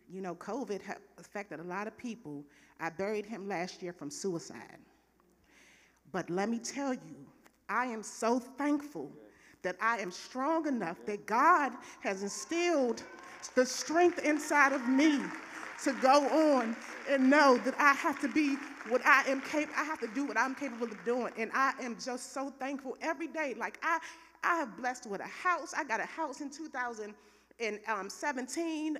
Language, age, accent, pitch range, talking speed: English, 40-59, American, 215-285 Hz, 180 wpm